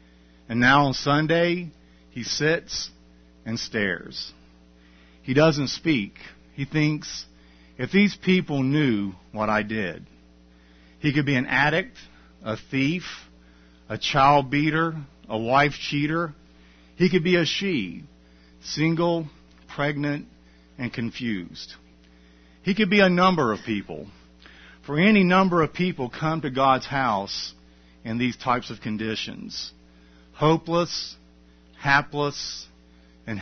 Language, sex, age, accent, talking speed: English, male, 50-69, American, 120 wpm